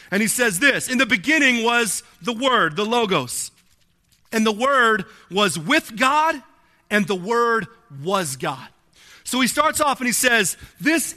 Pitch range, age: 215-280 Hz, 40-59